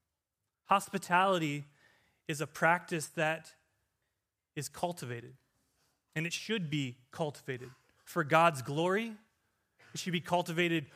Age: 30-49